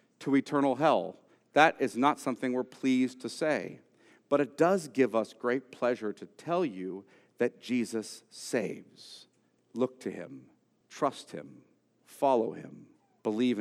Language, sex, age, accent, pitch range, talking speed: English, male, 50-69, American, 105-125 Hz, 140 wpm